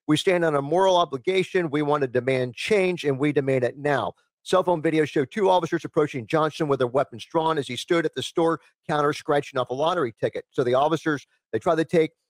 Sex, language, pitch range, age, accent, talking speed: male, English, 130-160 Hz, 50-69, American, 230 wpm